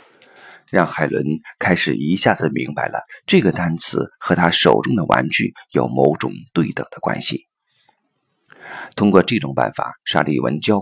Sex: male